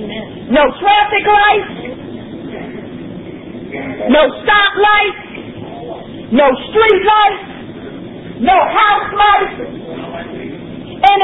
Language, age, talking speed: English, 40-59, 70 wpm